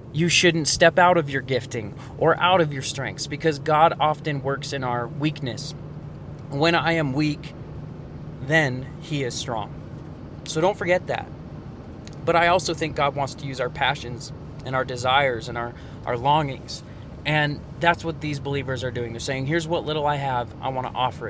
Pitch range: 135-165 Hz